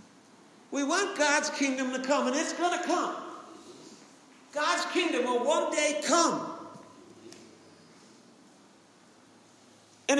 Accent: American